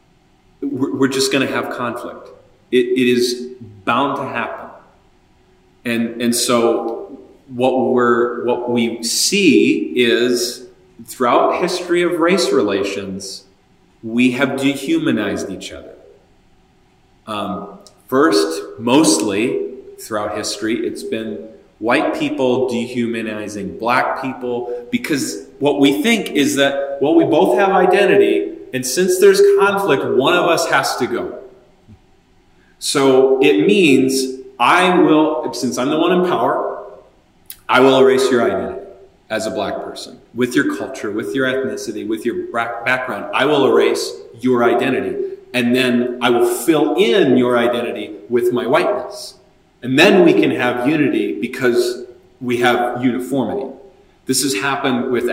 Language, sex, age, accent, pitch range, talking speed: English, male, 30-49, American, 120-200 Hz, 135 wpm